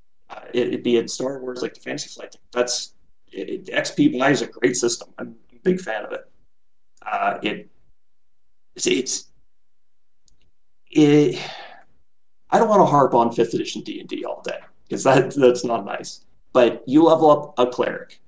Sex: male